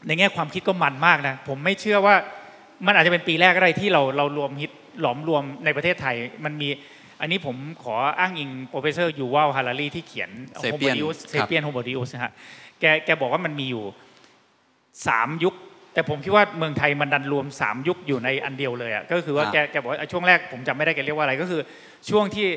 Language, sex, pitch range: Thai, male, 140-180 Hz